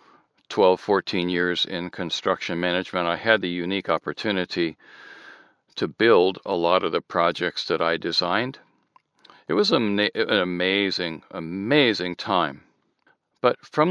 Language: English